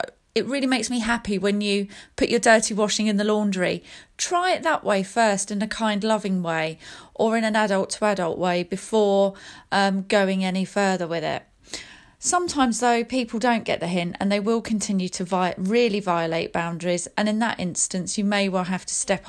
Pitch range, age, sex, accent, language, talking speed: 190-230 Hz, 30-49, female, British, English, 200 wpm